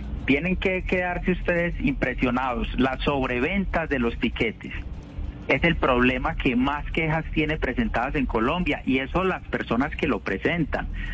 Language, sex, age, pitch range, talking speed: Spanish, male, 40-59, 115-155 Hz, 145 wpm